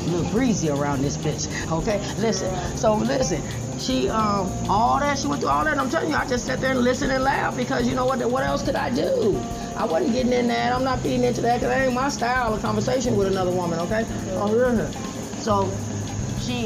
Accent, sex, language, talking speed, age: American, female, English, 225 wpm, 30-49